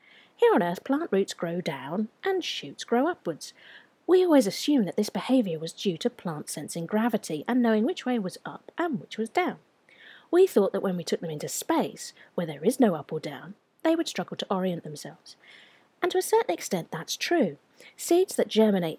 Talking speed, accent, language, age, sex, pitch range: 205 wpm, British, English, 40-59, female, 175-275 Hz